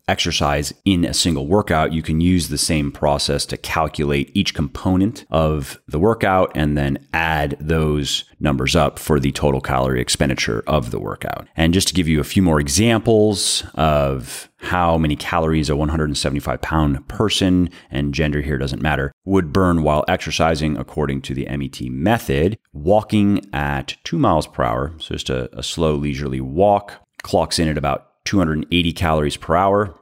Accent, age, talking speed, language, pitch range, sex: American, 30-49, 170 wpm, English, 70-90 Hz, male